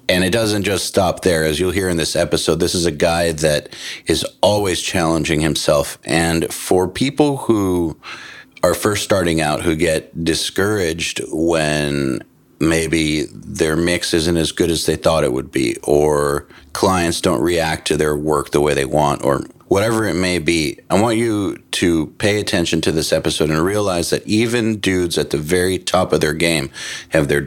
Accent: American